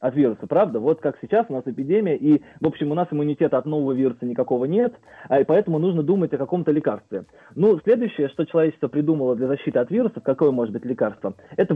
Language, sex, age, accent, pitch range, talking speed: Russian, male, 20-39, native, 140-175 Hz, 210 wpm